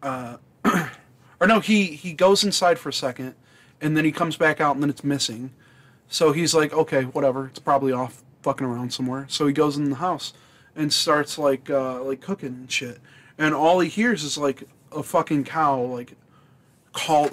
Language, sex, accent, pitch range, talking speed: English, male, American, 130-160 Hz, 195 wpm